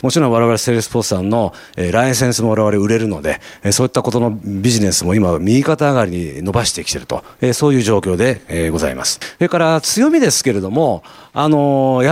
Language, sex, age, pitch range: Japanese, male, 40-59, 105-150 Hz